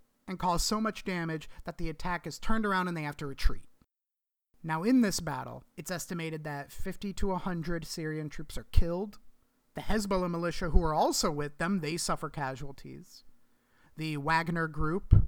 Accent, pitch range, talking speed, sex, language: American, 145-185 Hz, 170 wpm, male, English